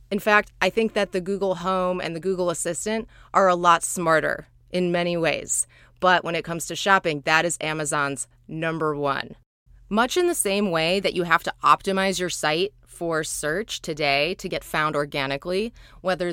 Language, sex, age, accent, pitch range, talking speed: English, female, 20-39, American, 155-195 Hz, 185 wpm